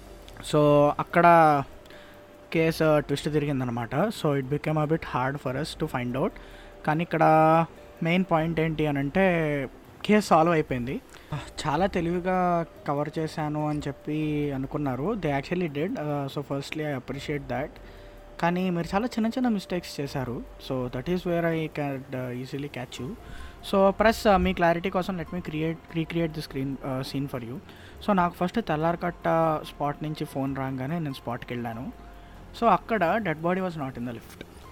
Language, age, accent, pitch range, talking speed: Telugu, 20-39, native, 135-175 Hz, 155 wpm